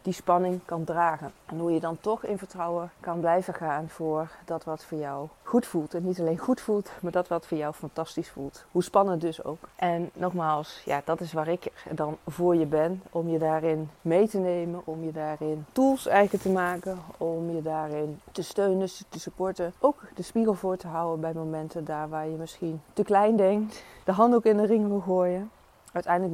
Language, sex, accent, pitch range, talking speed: Dutch, female, Dutch, 160-185 Hz, 210 wpm